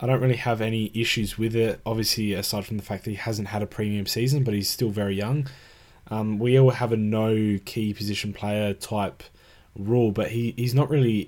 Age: 10-29